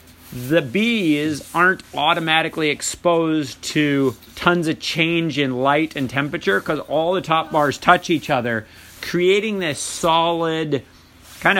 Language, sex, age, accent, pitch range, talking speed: English, male, 40-59, American, 130-175 Hz, 130 wpm